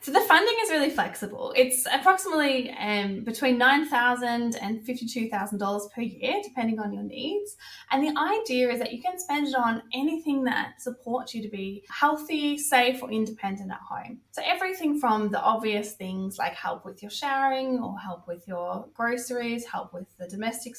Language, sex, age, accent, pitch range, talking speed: English, female, 20-39, Australian, 200-270 Hz, 175 wpm